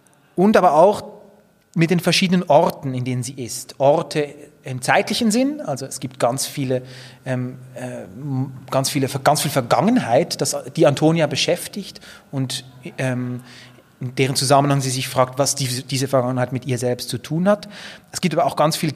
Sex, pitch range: male, 130-165 Hz